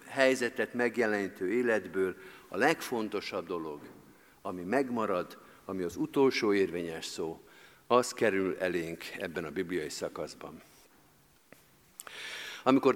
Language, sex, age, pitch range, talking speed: Hungarian, male, 50-69, 105-145 Hz, 95 wpm